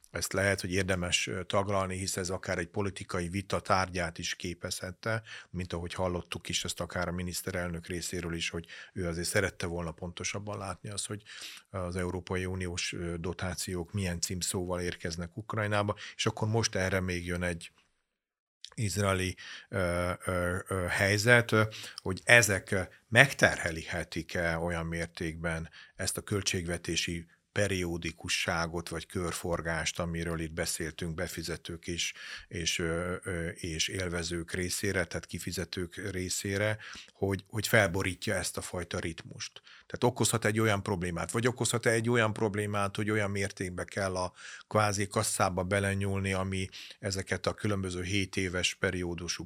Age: 40-59